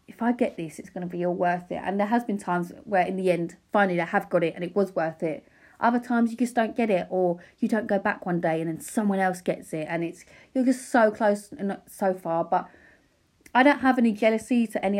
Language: English